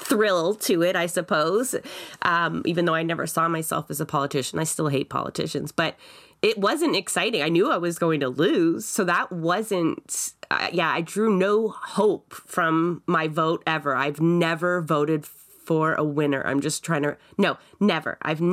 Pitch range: 160-200 Hz